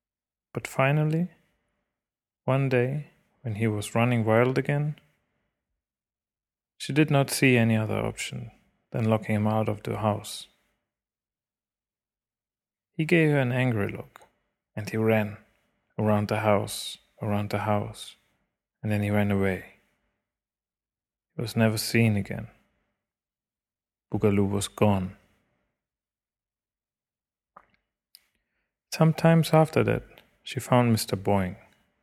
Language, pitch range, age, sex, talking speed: English, 105-130 Hz, 30-49, male, 110 wpm